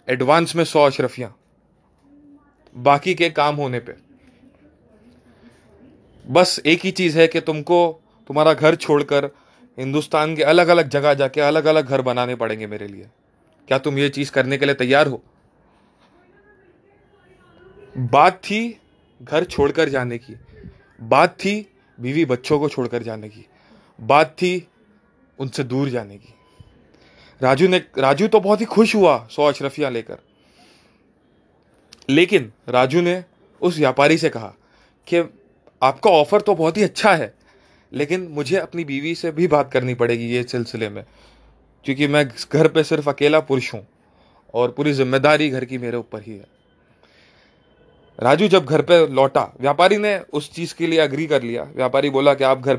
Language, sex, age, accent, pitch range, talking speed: Hindi, male, 30-49, native, 125-165 Hz, 155 wpm